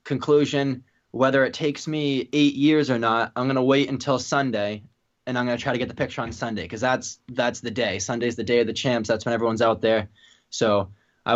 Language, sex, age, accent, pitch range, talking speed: English, male, 20-39, American, 120-135 Hz, 220 wpm